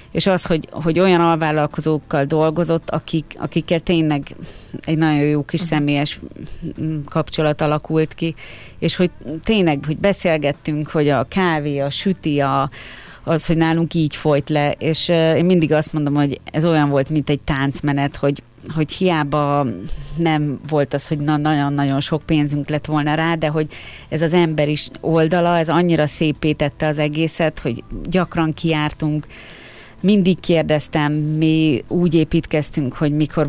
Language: Hungarian